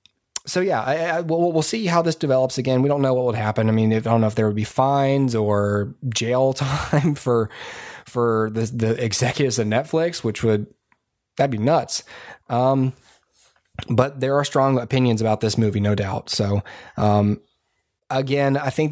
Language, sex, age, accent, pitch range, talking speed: English, male, 20-39, American, 115-140 Hz, 190 wpm